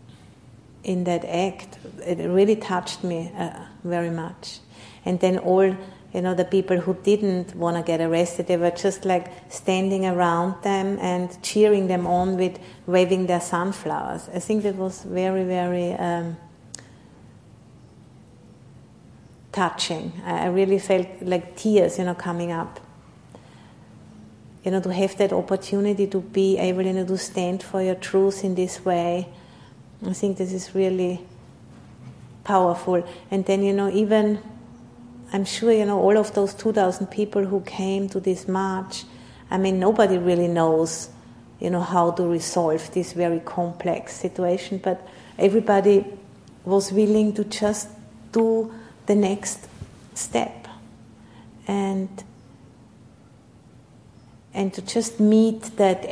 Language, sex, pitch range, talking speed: English, female, 175-195 Hz, 140 wpm